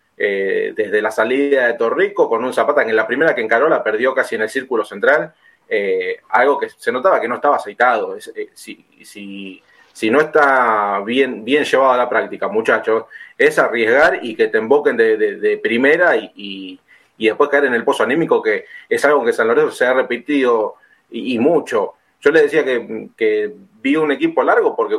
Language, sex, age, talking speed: Spanish, male, 30-49, 205 wpm